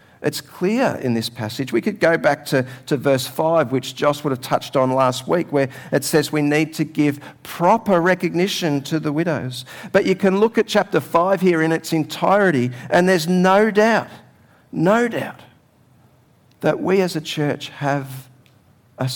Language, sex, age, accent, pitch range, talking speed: English, male, 50-69, Australian, 130-185 Hz, 180 wpm